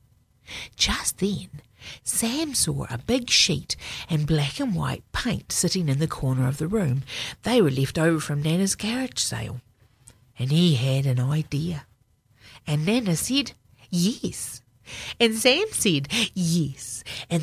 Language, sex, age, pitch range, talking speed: English, female, 50-69, 130-195 Hz, 140 wpm